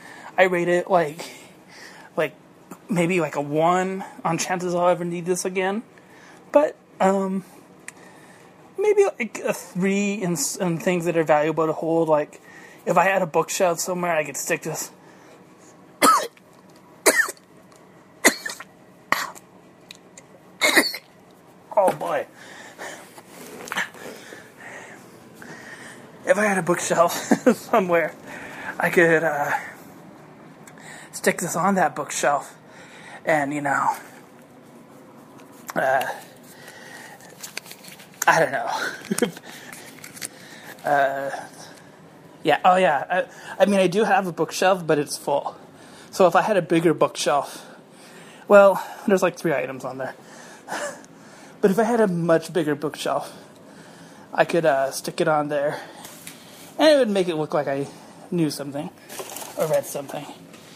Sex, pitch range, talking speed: male, 160-195 Hz, 120 wpm